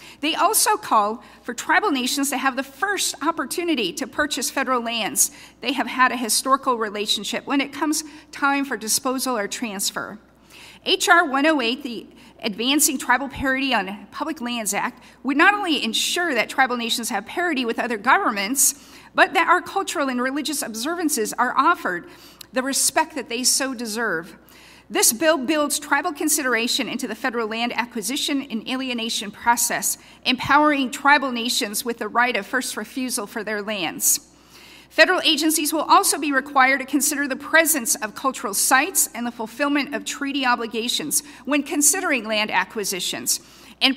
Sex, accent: female, American